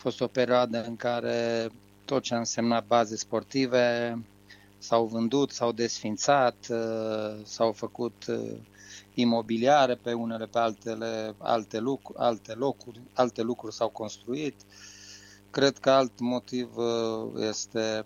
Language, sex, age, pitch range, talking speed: Romanian, male, 30-49, 100-120 Hz, 120 wpm